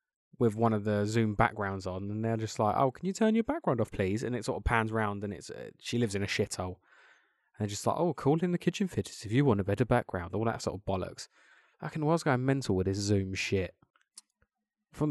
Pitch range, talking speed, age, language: 105-135 Hz, 260 wpm, 20-39, English